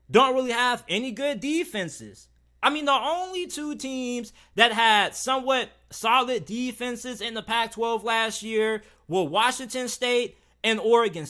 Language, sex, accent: English, male, American